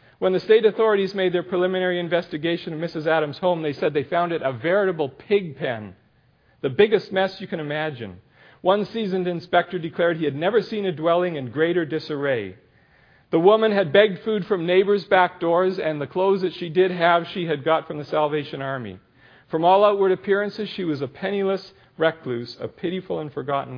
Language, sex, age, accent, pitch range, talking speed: English, male, 50-69, American, 140-185 Hz, 190 wpm